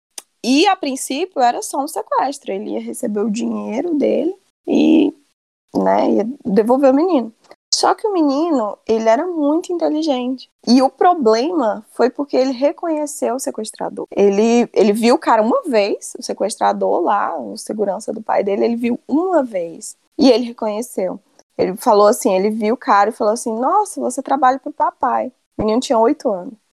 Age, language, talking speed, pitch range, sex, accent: 20-39, Portuguese, 175 wpm, 220-290 Hz, female, Brazilian